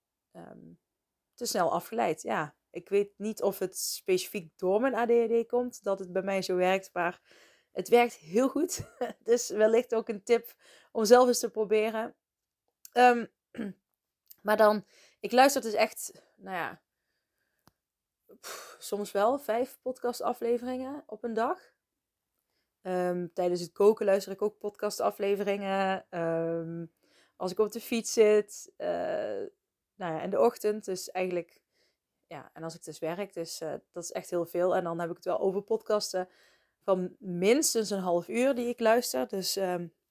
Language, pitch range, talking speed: Dutch, 185-235 Hz, 150 wpm